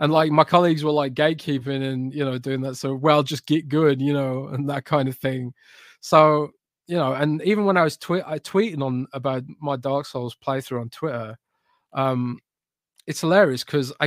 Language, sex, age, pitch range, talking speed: English, male, 20-39, 135-190 Hz, 195 wpm